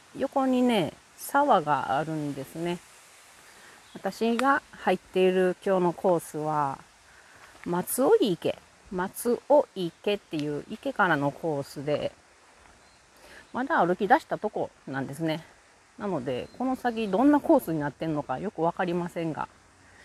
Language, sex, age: Japanese, female, 40-59